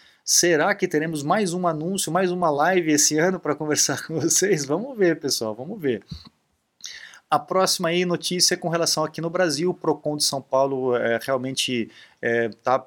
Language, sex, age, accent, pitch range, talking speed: Portuguese, male, 20-39, Brazilian, 125-175 Hz, 175 wpm